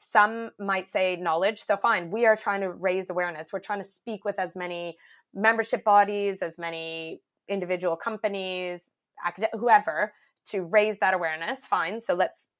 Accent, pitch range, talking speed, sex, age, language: American, 175-220 Hz, 155 wpm, female, 20-39, English